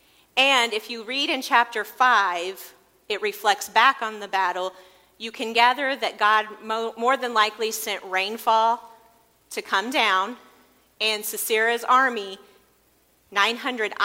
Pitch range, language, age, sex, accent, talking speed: 205-265 Hz, English, 40-59, female, American, 130 wpm